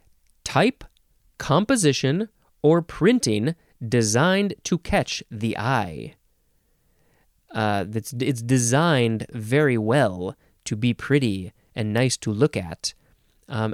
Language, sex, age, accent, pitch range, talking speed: English, male, 30-49, American, 115-165 Hz, 105 wpm